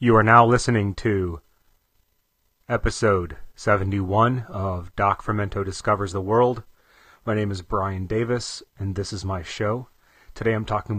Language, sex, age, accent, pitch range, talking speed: English, male, 30-49, American, 95-115 Hz, 140 wpm